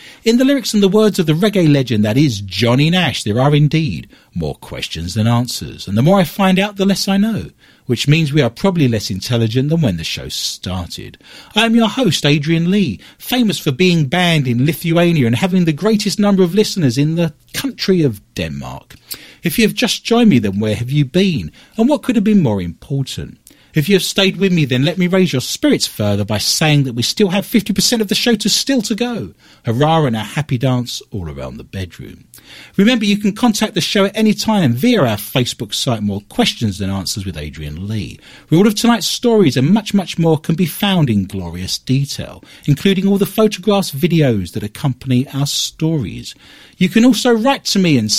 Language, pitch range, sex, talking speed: English, 120-200 Hz, male, 210 wpm